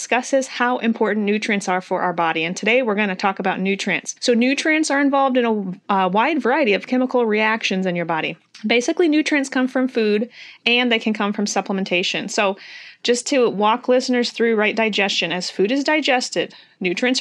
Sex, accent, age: female, American, 30-49